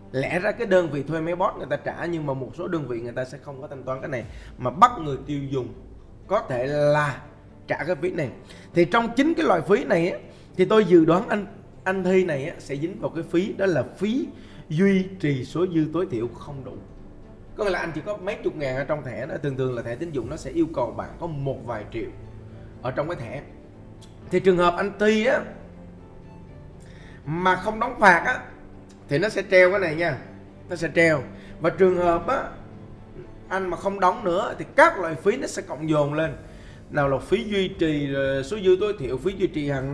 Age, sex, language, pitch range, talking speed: 20-39, male, Vietnamese, 130-190 Hz, 230 wpm